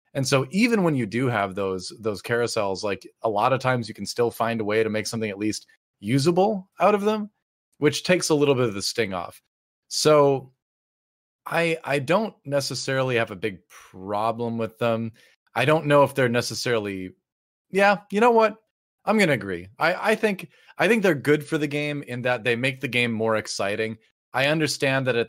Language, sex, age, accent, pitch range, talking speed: English, male, 30-49, American, 110-140 Hz, 205 wpm